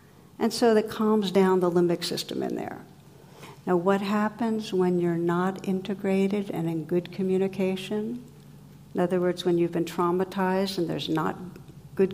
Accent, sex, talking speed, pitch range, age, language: American, female, 160 wpm, 170-205 Hz, 60-79, English